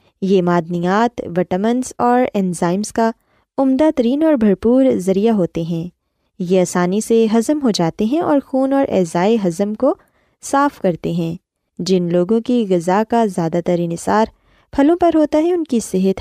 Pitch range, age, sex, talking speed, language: 180-265 Hz, 20-39, female, 165 wpm, Urdu